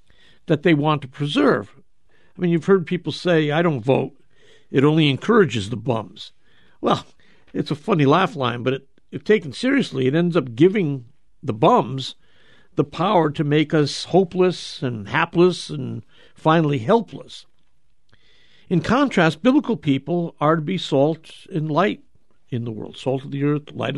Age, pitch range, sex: 60-79, 135-180 Hz, male